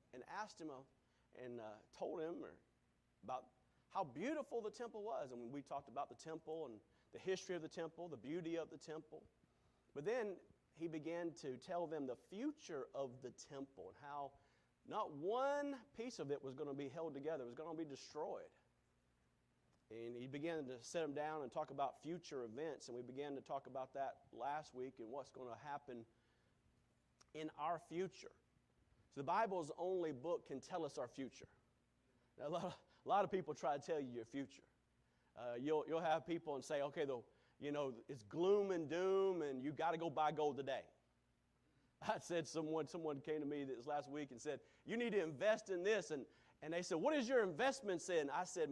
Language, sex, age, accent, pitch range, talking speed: English, male, 40-59, American, 135-180 Hz, 205 wpm